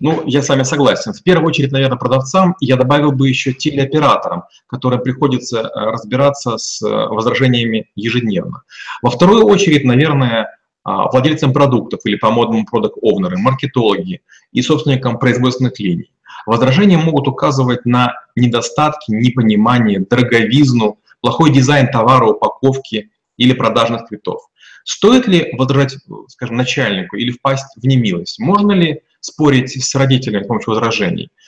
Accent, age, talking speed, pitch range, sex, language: native, 30-49, 130 wpm, 120-150 Hz, male, Russian